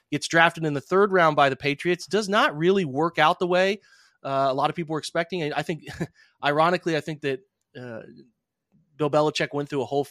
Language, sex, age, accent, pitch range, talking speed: English, male, 30-49, American, 130-155 Hz, 215 wpm